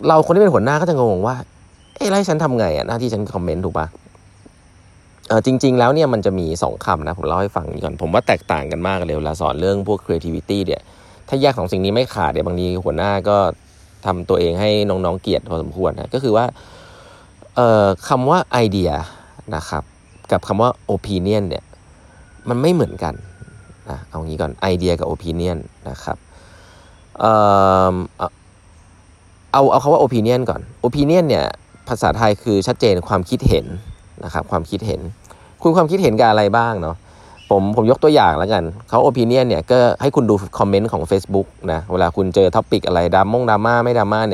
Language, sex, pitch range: Thai, male, 90-115 Hz